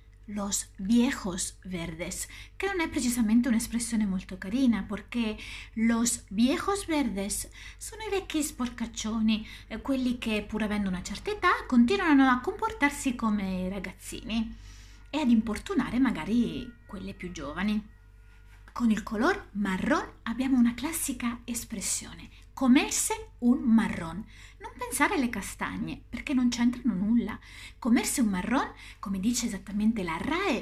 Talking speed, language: 125 wpm, Italian